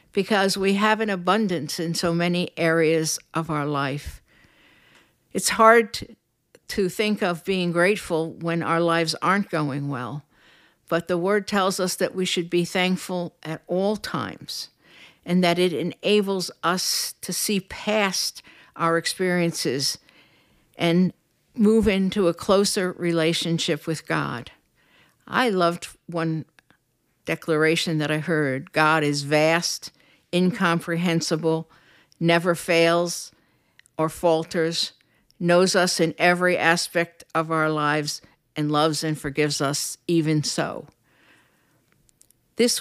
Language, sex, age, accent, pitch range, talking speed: English, female, 60-79, American, 160-185 Hz, 120 wpm